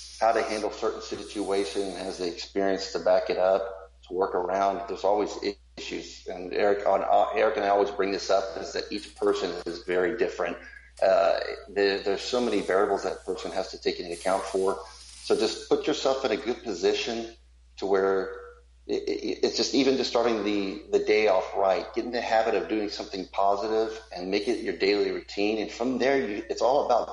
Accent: American